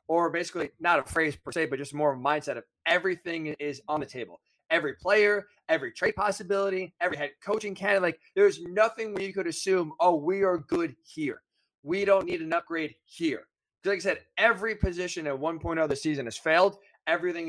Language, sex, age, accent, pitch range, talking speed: English, male, 20-39, American, 155-195 Hz, 200 wpm